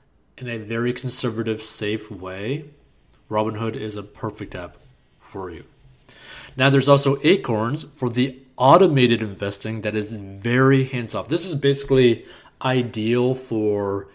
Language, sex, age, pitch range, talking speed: English, male, 20-39, 110-130 Hz, 125 wpm